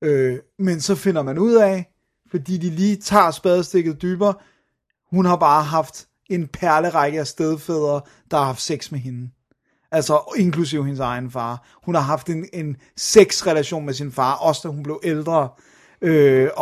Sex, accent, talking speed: male, native, 165 wpm